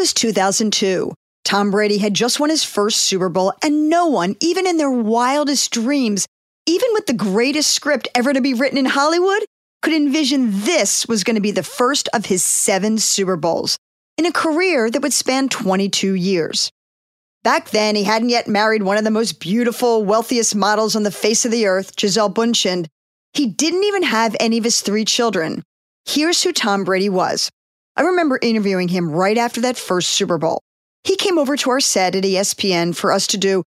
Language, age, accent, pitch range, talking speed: English, 40-59, American, 200-280 Hz, 195 wpm